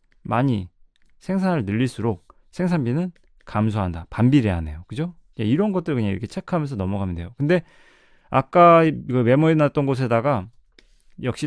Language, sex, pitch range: Korean, male, 110-170 Hz